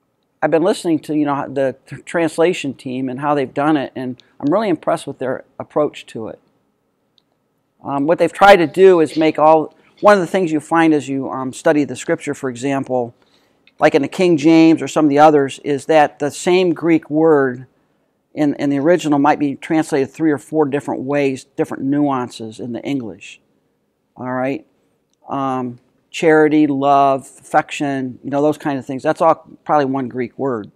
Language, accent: English, American